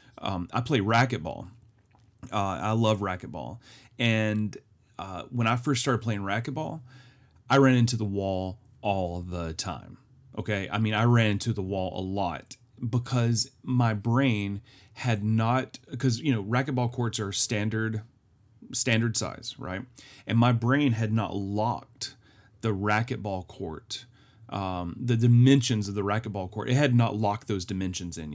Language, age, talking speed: English, 30-49, 150 wpm